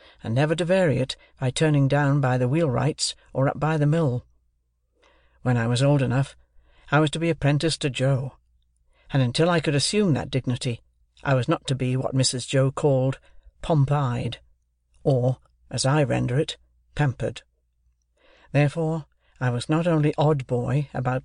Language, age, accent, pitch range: Korean, 60-79, British, 125-150 Hz